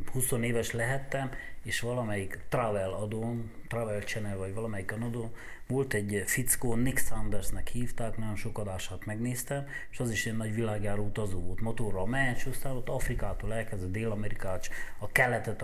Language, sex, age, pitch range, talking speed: Hungarian, male, 30-49, 105-125 Hz, 145 wpm